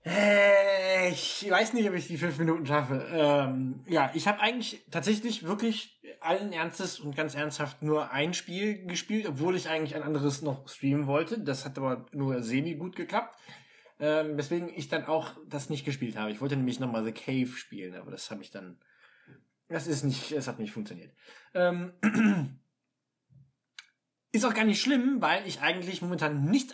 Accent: German